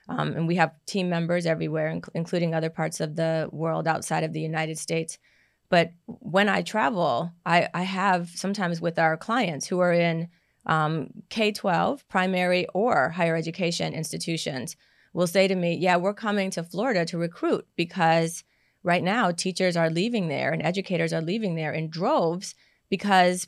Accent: American